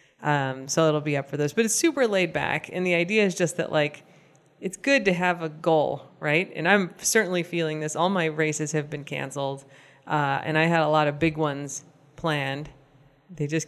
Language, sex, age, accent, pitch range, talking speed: English, female, 30-49, American, 145-165 Hz, 215 wpm